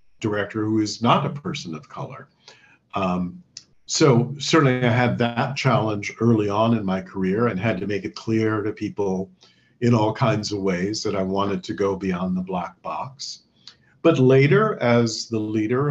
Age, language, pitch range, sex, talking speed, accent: 50-69, English, 100-130 Hz, male, 175 wpm, American